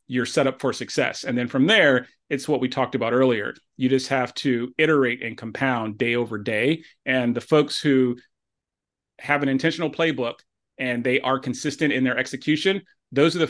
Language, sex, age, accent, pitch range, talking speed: English, male, 30-49, American, 125-150 Hz, 190 wpm